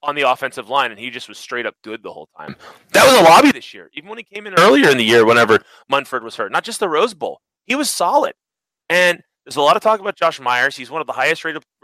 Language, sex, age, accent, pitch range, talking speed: English, male, 30-49, American, 110-175 Hz, 285 wpm